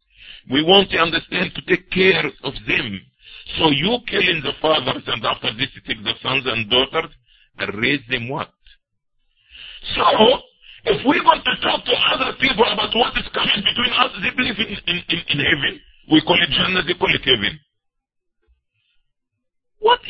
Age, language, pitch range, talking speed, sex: 50-69, English, 140-225 Hz, 170 wpm, male